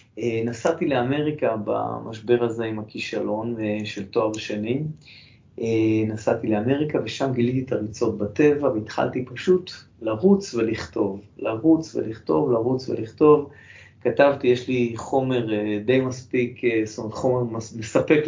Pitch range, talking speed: 120-170 Hz, 110 wpm